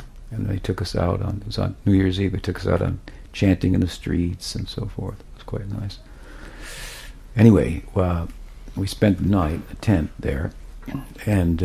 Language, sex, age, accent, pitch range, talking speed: English, male, 60-79, American, 85-100 Hz, 195 wpm